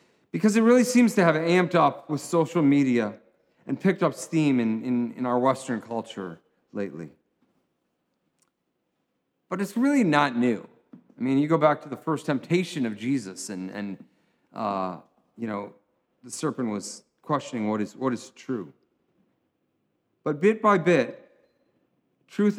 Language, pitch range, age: English, 115-160 Hz, 40-59